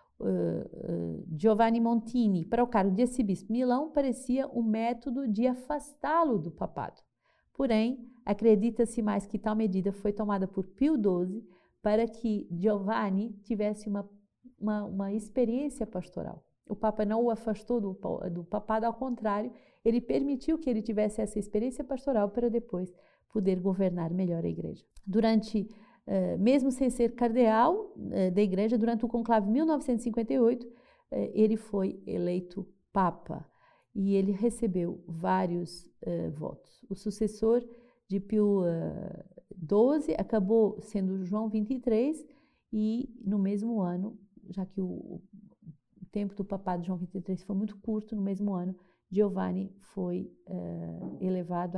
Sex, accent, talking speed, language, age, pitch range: female, Brazilian, 130 wpm, Portuguese, 50-69, 190-235 Hz